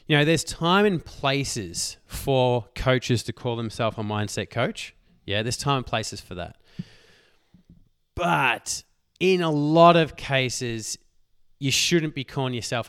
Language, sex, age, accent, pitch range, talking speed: English, male, 20-39, Australian, 115-175 Hz, 150 wpm